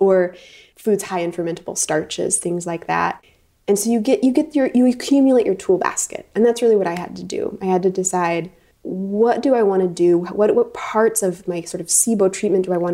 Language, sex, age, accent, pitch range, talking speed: English, female, 20-39, American, 180-220 Hz, 235 wpm